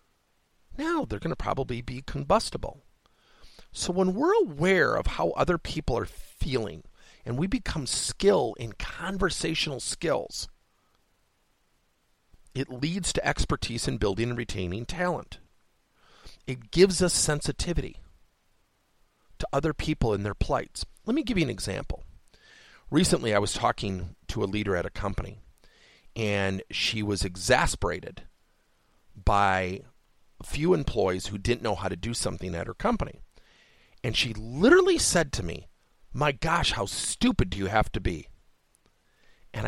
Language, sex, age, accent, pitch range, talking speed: English, male, 50-69, American, 100-160 Hz, 140 wpm